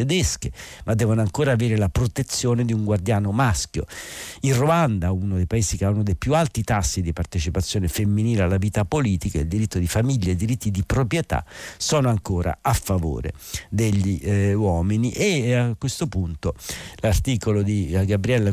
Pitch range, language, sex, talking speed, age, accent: 90-115 Hz, Italian, male, 170 wpm, 50-69, native